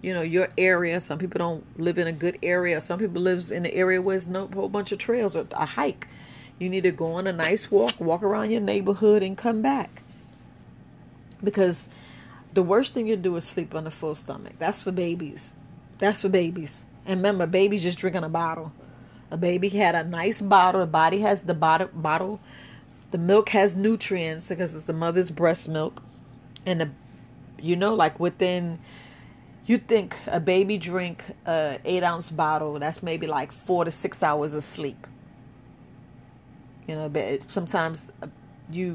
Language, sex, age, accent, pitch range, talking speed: English, female, 40-59, American, 155-190 Hz, 180 wpm